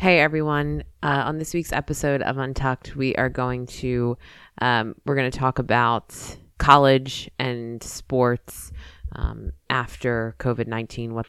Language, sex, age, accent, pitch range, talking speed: English, female, 20-39, American, 115-135 Hz, 140 wpm